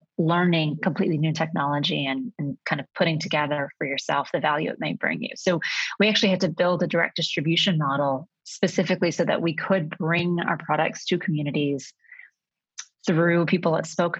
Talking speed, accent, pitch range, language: 180 wpm, American, 155-185 Hz, English